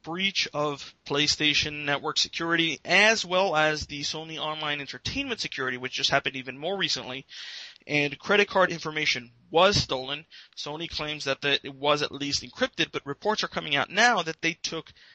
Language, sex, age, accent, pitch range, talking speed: English, male, 30-49, American, 130-160 Hz, 165 wpm